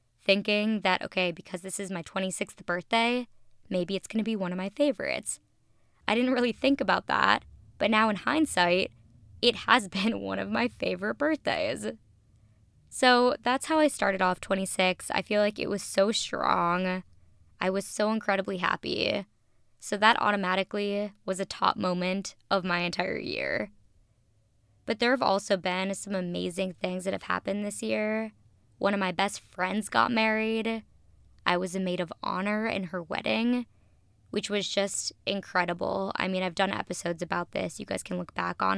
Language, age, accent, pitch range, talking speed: English, 20-39, American, 175-205 Hz, 175 wpm